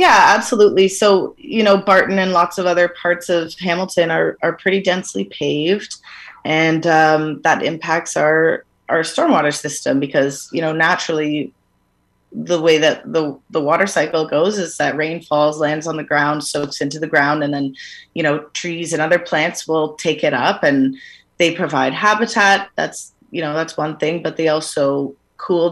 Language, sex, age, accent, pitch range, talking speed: English, female, 30-49, American, 145-175 Hz, 175 wpm